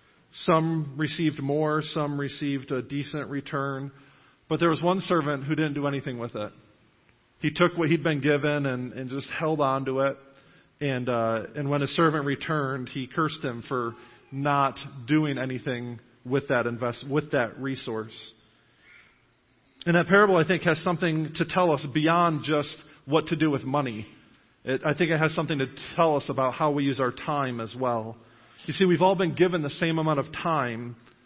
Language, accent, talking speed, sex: English, American, 180 wpm, male